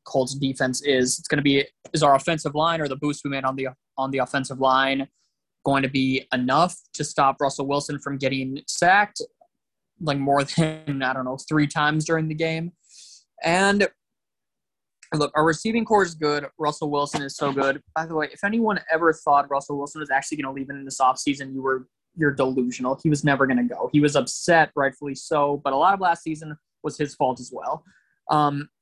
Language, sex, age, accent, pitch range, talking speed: English, male, 20-39, American, 135-160 Hz, 210 wpm